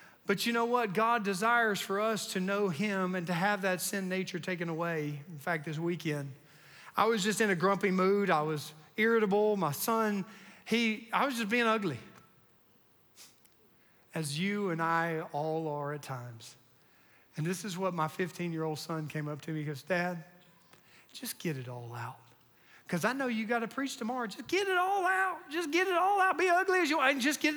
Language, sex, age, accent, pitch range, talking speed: English, male, 40-59, American, 165-235 Hz, 200 wpm